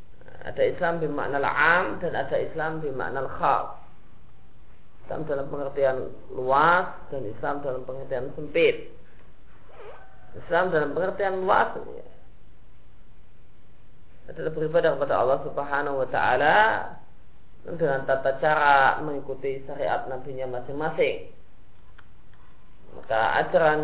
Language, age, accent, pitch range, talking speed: Indonesian, 30-49, native, 120-160 Hz, 100 wpm